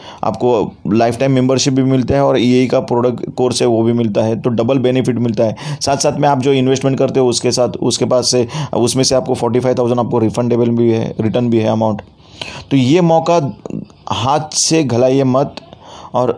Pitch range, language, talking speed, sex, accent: 120-135 Hz, Hindi, 205 wpm, male, native